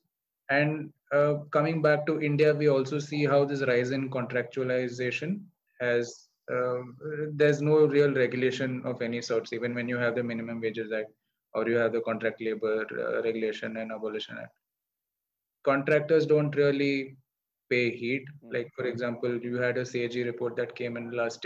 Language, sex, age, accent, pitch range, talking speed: English, male, 20-39, Indian, 120-145 Hz, 160 wpm